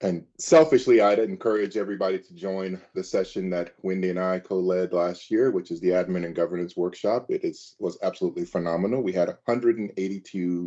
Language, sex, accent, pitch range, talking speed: English, male, American, 90-110 Hz, 170 wpm